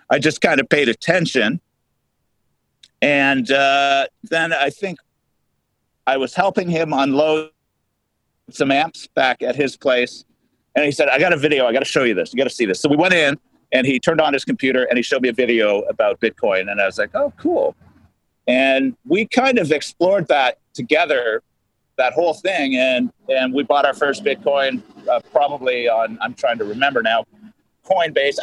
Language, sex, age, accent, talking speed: English, male, 40-59, American, 190 wpm